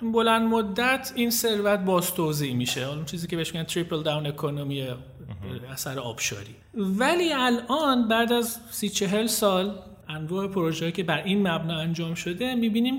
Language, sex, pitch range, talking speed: Persian, male, 165-215 Hz, 150 wpm